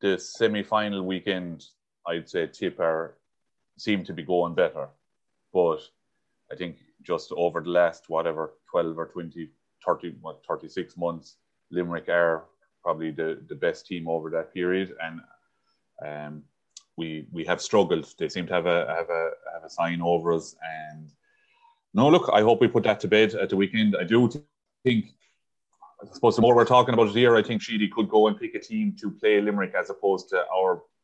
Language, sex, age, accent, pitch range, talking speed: English, male, 30-49, Irish, 85-110 Hz, 185 wpm